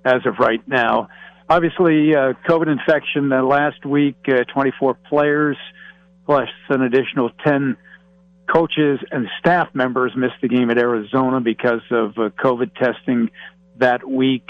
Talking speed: 145 wpm